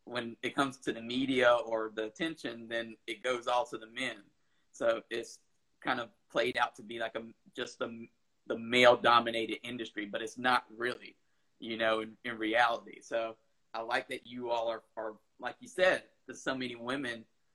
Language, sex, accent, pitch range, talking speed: English, male, American, 115-140 Hz, 190 wpm